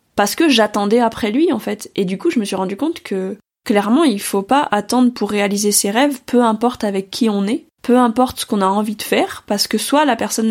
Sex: female